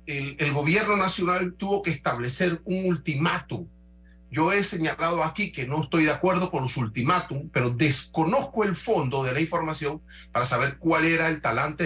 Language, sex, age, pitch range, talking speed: Spanish, male, 40-59, 105-170 Hz, 170 wpm